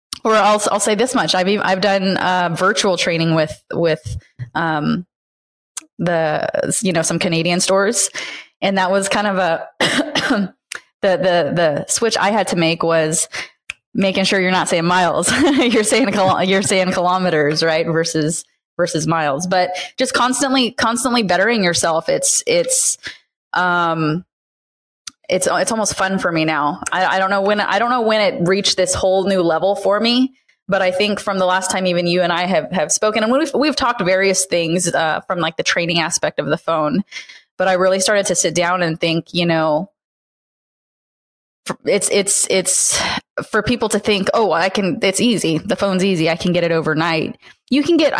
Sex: female